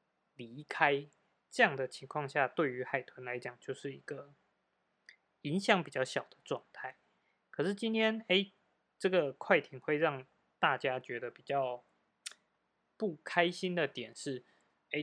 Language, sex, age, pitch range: Chinese, male, 20-39, 125-165 Hz